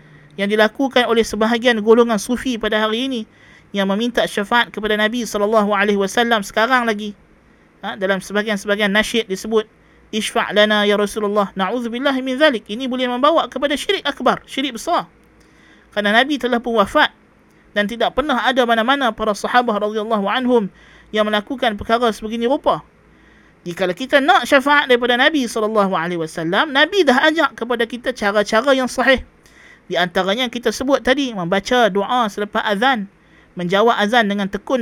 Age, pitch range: 20-39, 205-260 Hz